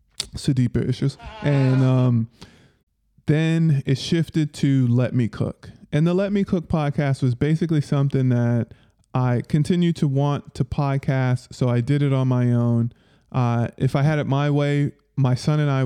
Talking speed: 170 wpm